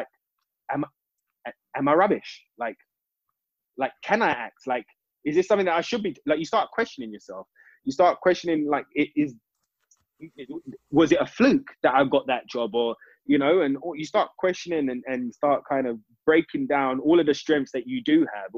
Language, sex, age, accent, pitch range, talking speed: English, male, 20-39, British, 130-170 Hz, 185 wpm